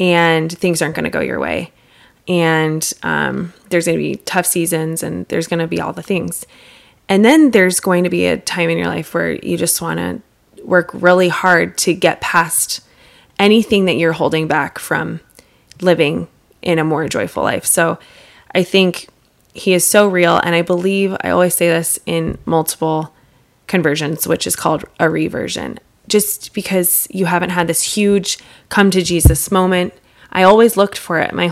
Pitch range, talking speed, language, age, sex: 165-190 Hz, 185 wpm, English, 20-39, female